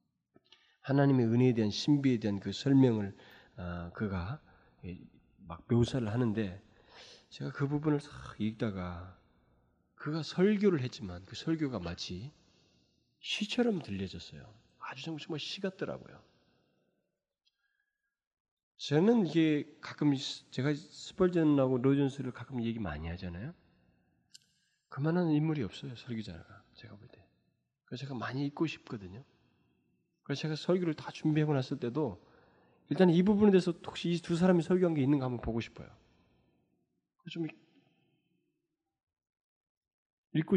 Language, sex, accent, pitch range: Korean, male, native, 105-165 Hz